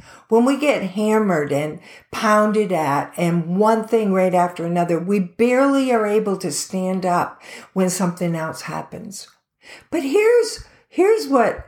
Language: English